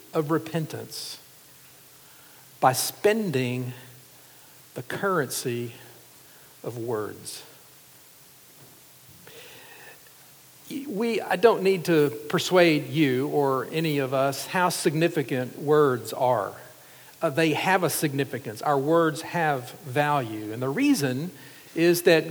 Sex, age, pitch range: male, 50-69, 140-175 Hz